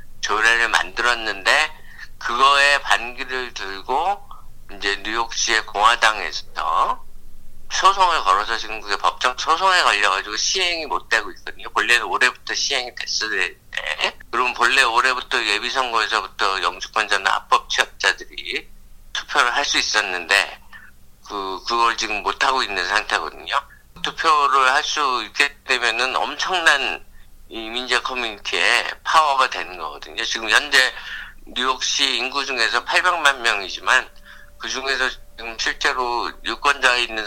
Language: Korean